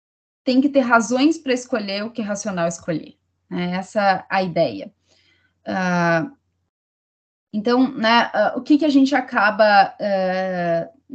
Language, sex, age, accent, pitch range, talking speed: Portuguese, female, 20-39, Brazilian, 180-230 Hz, 140 wpm